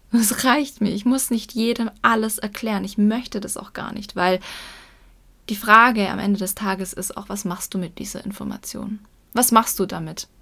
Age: 10-29